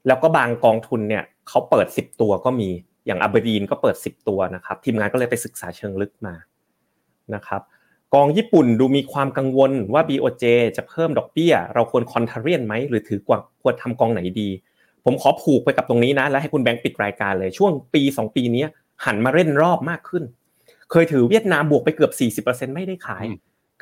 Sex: male